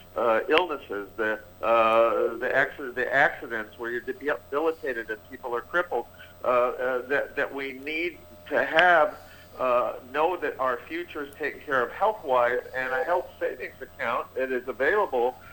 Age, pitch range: 50-69, 130-175 Hz